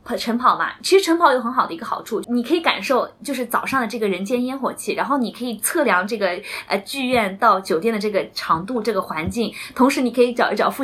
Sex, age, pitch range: female, 20-39, 205-255 Hz